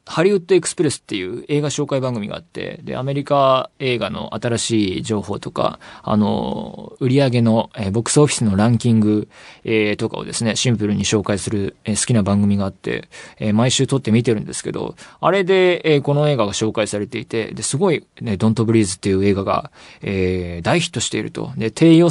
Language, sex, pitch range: Japanese, male, 105-145 Hz